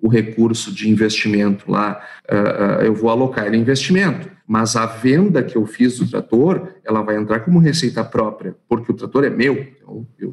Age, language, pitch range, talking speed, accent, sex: 50-69, Portuguese, 110-135 Hz, 185 wpm, Brazilian, male